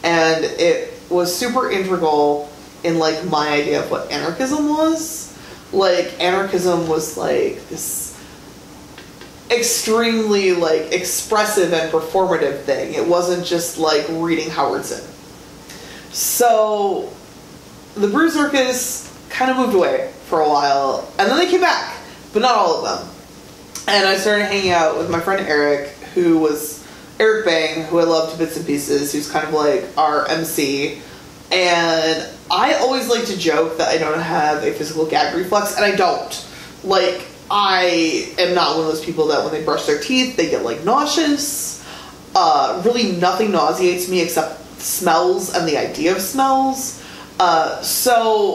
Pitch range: 160-250 Hz